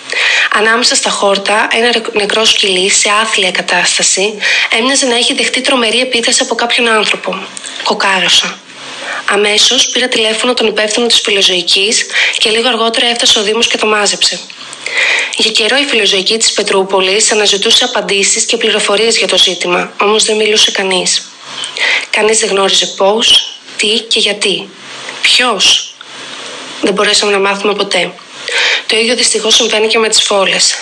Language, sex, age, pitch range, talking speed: Greek, female, 20-39, 200-240 Hz, 140 wpm